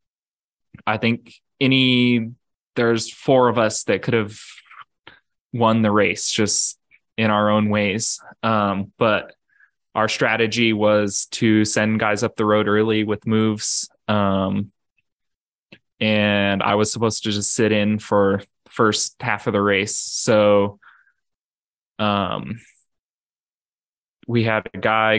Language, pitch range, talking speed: English, 105-115 Hz, 130 wpm